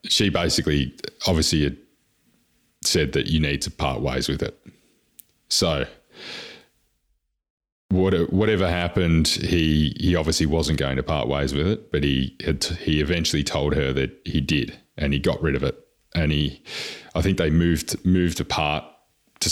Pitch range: 70-85 Hz